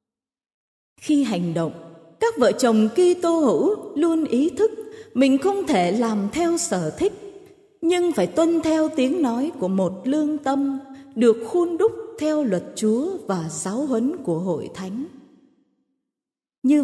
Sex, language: female, Vietnamese